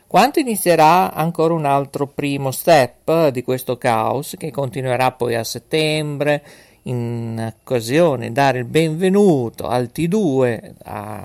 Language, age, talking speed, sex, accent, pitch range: Italian, 50-69, 125 wpm, male, native, 125-170 Hz